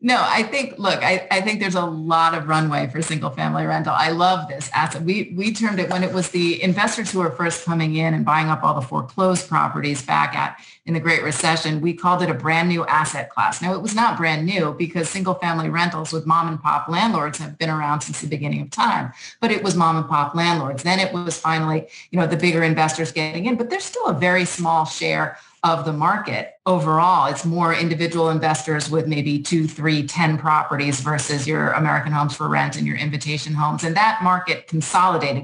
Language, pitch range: English, 155-185 Hz